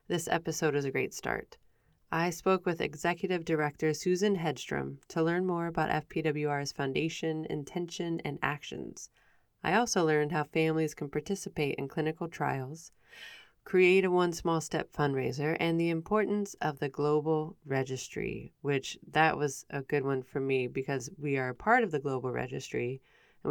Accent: American